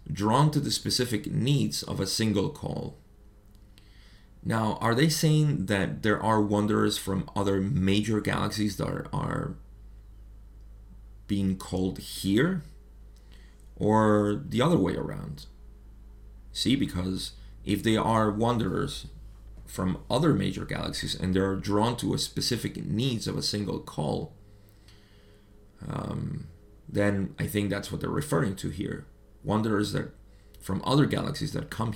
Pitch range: 95-110 Hz